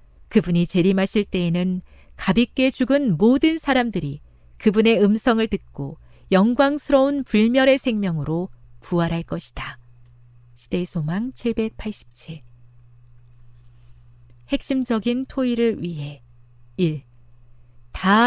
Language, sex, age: Korean, female, 40-59